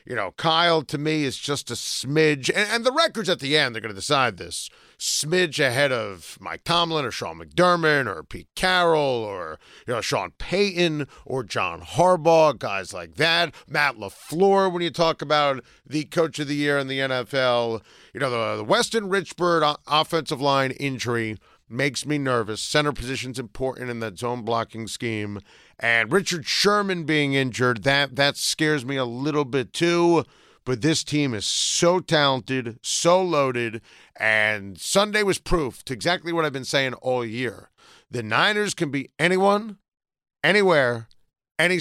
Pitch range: 120-170 Hz